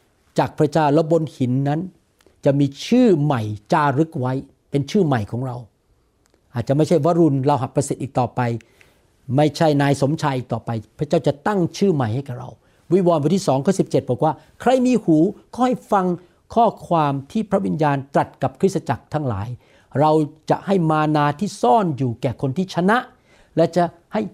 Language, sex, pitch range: Thai, male, 130-195 Hz